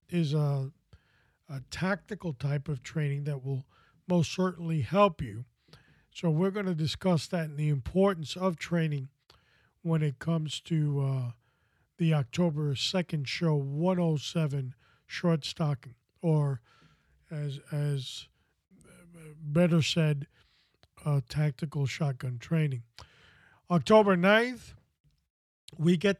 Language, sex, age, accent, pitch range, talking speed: English, male, 40-59, American, 140-180 Hz, 110 wpm